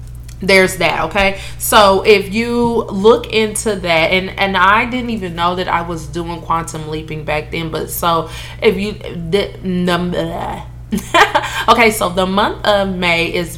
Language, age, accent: English, 20-39, American